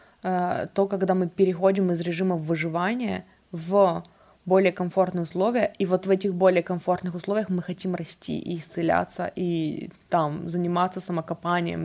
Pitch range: 175-195 Hz